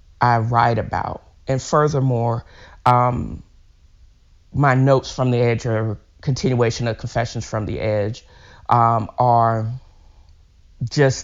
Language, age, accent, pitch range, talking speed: English, 40-59, American, 110-135 Hz, 110 wpm